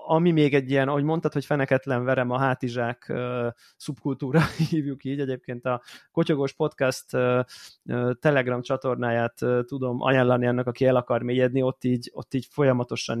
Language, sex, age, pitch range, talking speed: Hungarian, male, 20-39, 120-140 Hz, 145 wpm